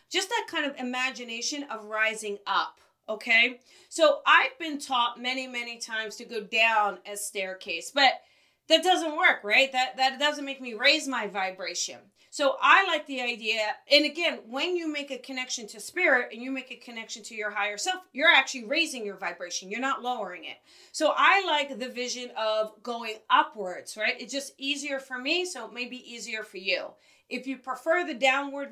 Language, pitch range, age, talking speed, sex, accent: English, 220-280 Hz, 30-49, 190 wpm, female, American